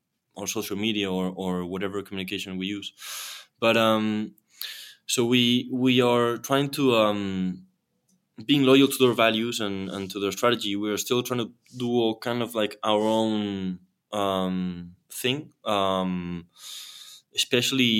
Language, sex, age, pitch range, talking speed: English, male, 20-39, 95-110 Hz, 145 wpm